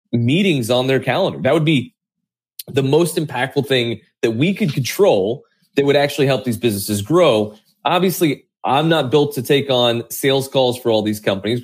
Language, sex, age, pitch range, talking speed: English, male, 30-49, 115-145 Hz, 180 wpm